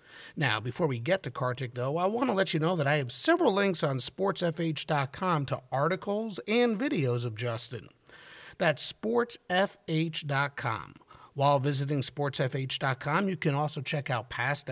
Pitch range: 140-190 Hz